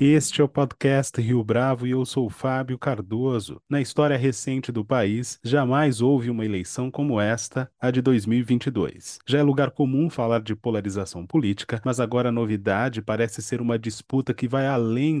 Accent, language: Brazilian, Portuguese